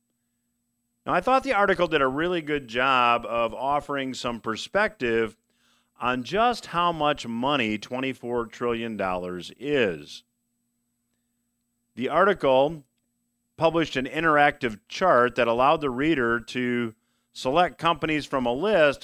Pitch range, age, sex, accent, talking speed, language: 120-140 Hz, 40-59, male, American, 120 wpm, English